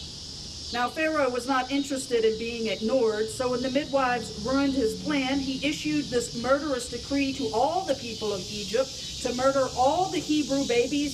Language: English